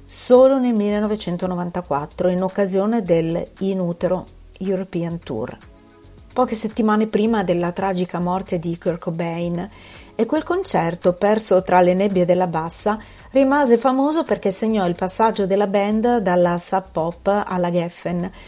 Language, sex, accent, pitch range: Italian, female, native, 180-220 Hz